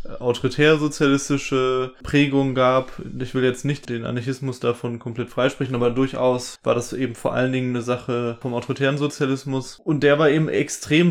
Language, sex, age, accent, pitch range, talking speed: German, male, 20-39, German, 125-150 Hz, 160 wpm